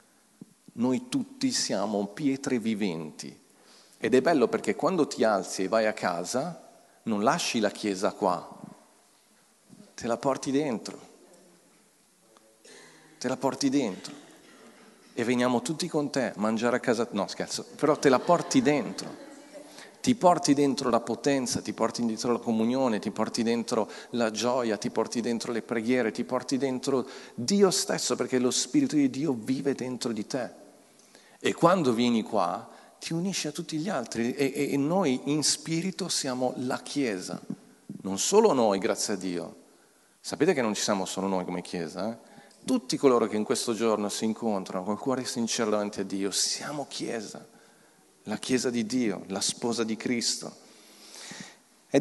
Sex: male